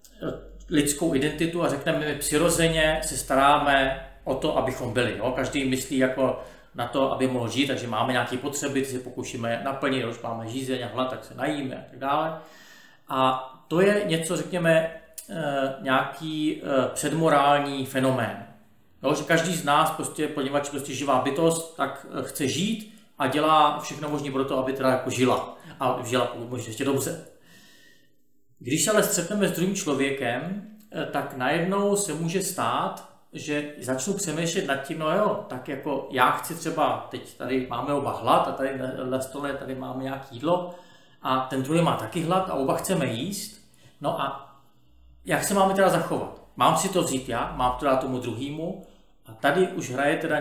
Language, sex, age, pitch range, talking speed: Czech, male, 40-59, 130-155 Hz, 170 wpm